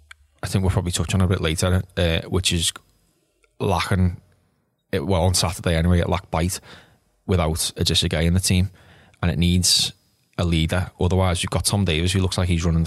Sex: male